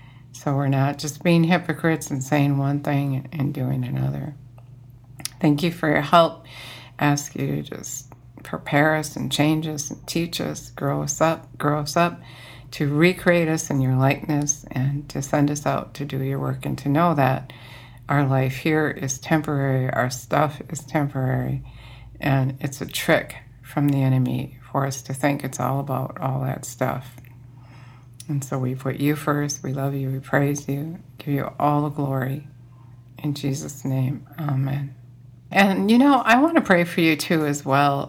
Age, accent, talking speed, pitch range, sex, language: 60-79, American, 180 wpm, 130-150 Hz, female, English